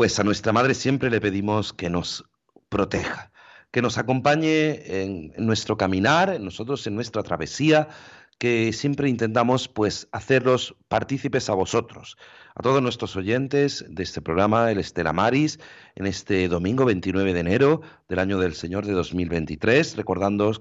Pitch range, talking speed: 95-120 Hz, 145 wpm